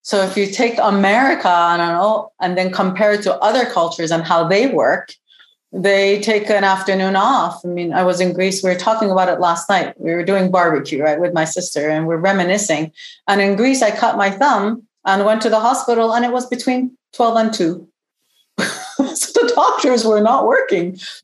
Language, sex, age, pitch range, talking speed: English, female, 40-59, 170-215 Hz, 205 wpm